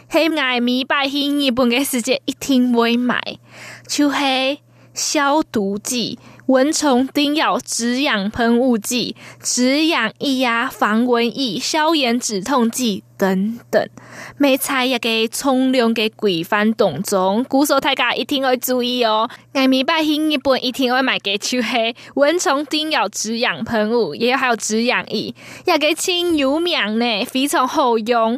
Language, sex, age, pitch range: Chinese, female, 20-39, 235-290 Hz